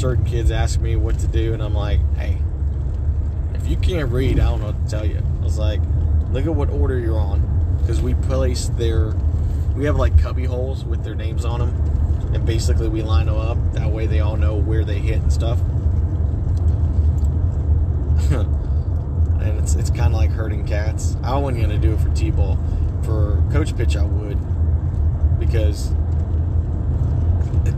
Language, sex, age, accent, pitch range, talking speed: English, male, 30-49, American, 80-105 Hz, 180 wpm